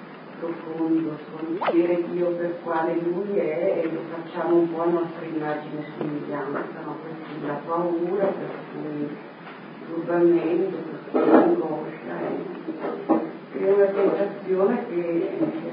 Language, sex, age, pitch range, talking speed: Italian, male, 40-59, 165-190 Hz, 115 wpm